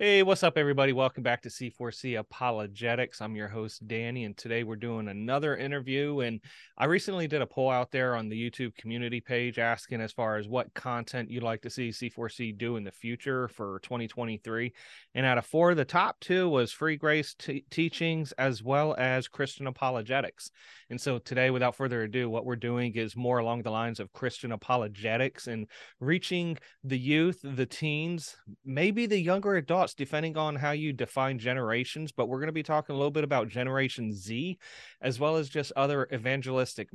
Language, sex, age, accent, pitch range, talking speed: English, male, 30-49, American, 115-140 Hz, 190 wpm